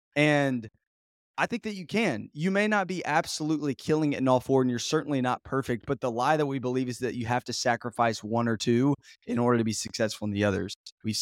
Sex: male